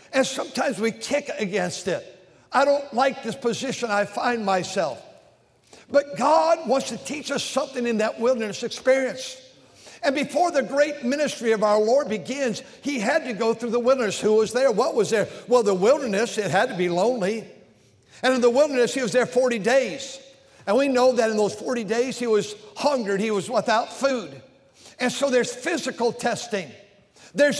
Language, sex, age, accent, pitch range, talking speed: English, male, 60-79, American, 220-270 Hz, 185 wpm